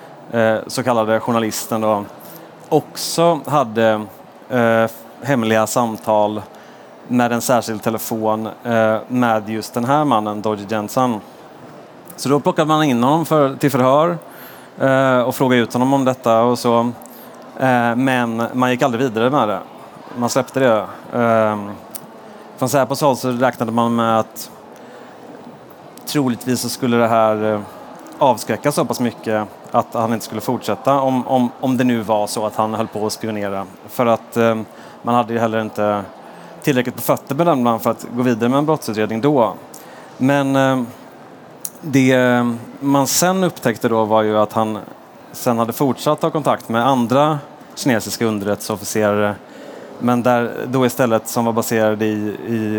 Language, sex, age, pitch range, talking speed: Swedish, male, 30-49, 110-130 Hz, 155 wpm